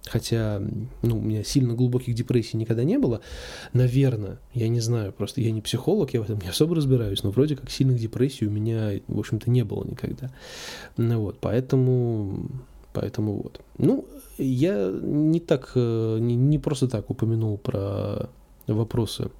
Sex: male